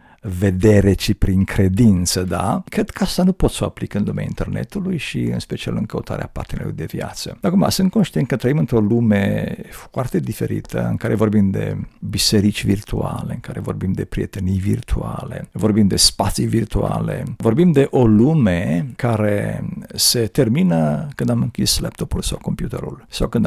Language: Romanian